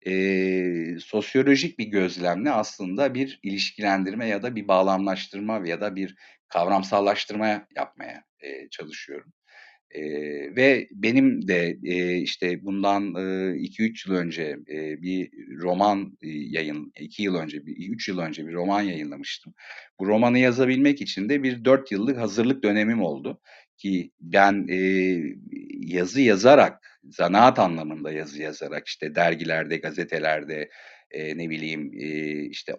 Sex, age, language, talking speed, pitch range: male, 50-69, Turkish, 135 wpm, 85-105 Hz